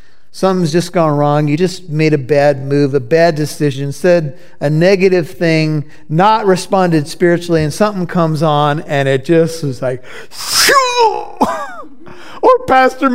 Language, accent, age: English, American, 50-69